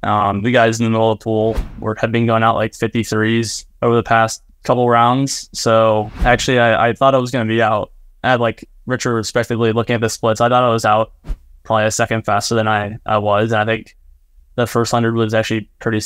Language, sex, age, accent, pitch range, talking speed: English, male, 10-29, American, 105-115 Hz, 230 wpm